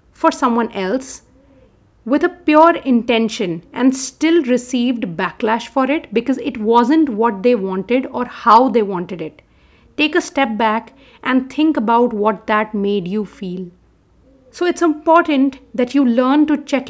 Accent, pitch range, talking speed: Indian, 225-280 Hz, 155 wpm